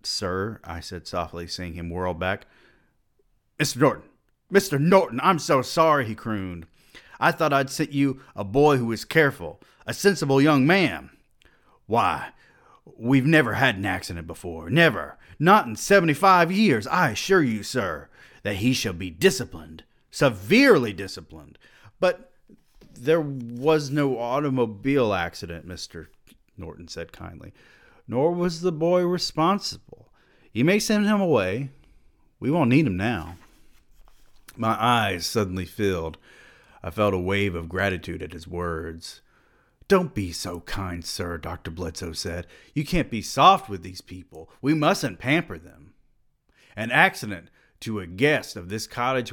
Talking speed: 145 wpm